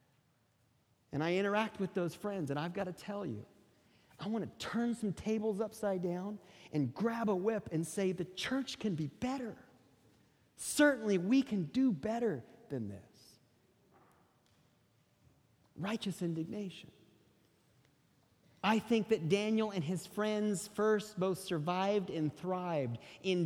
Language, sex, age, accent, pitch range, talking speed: English, male, 40-59, American, 145-210 Hz, 135 wpm